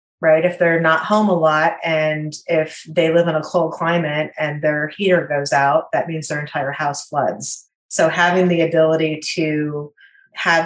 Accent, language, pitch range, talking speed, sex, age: American, English, 160-190 Hz, 180 wpm, female, 30-49